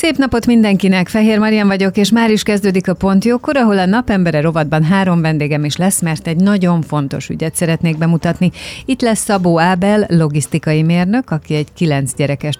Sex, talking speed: female, 180 wpm